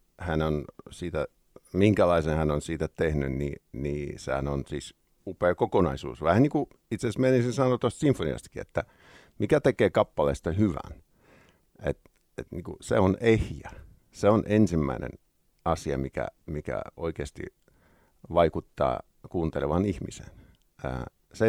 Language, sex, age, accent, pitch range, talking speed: Finnish, male, 50-69, native, 80-105 Hz, 120 wpm